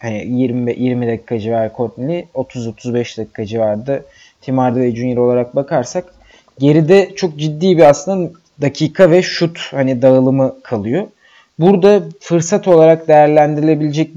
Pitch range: 130-175 Hz